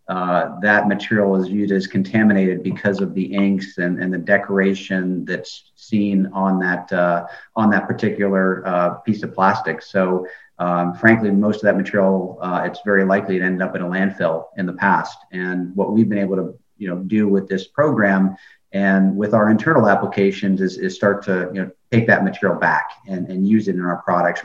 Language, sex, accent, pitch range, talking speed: English, male, American, 90-100 Hz, 195 wpm